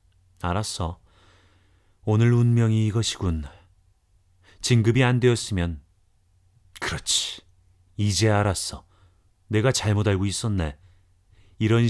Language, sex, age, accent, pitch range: Korean, male, 30-49, native, 90-115 Hz